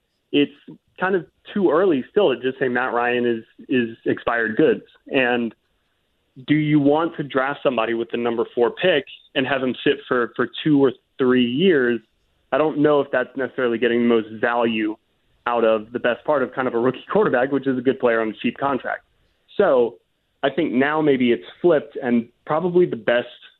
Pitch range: 115-140 Hz